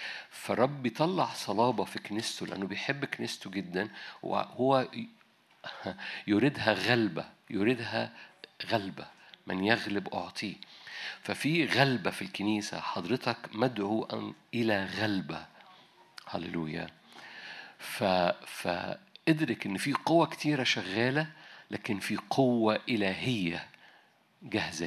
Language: Arabic